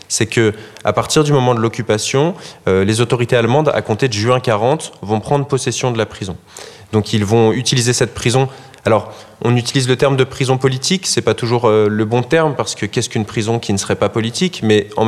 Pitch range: 105-130 Hz